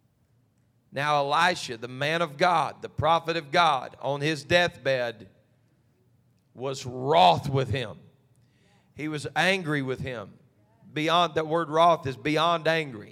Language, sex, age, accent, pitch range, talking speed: English, male, 40-59, American, 130-160 Hz, 135 wpm